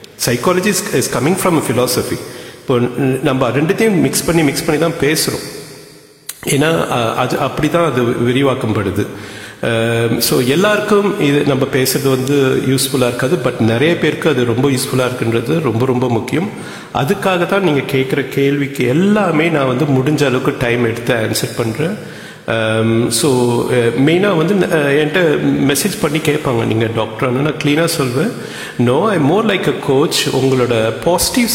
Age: 50-69